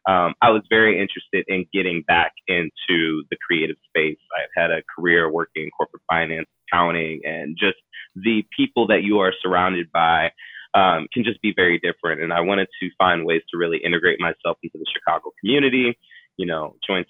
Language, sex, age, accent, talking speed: English, male, 20-39, American, 185 wpm